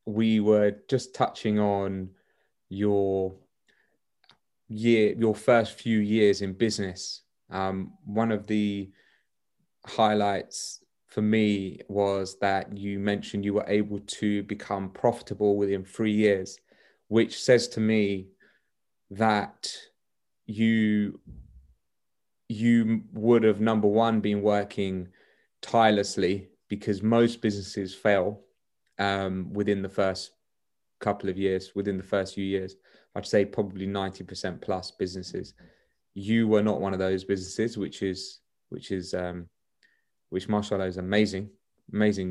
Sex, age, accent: male, 30-49, British